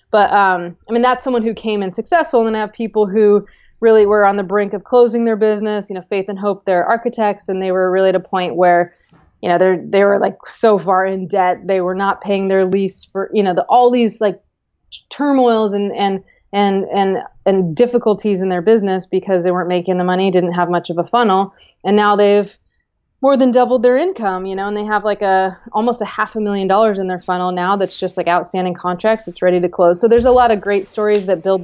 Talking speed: 245 wpm